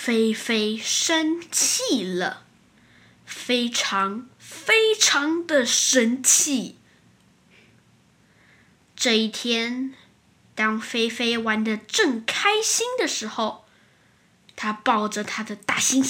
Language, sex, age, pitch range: Chinese, female, 10-29, 215-280 Hz